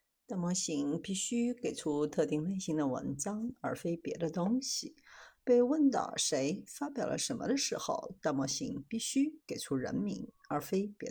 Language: Chinese